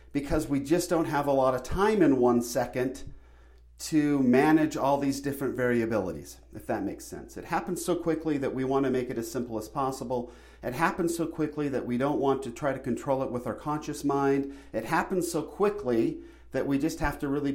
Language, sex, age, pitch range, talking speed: English, male, 40-59, 125-165 Hz, 210 wpm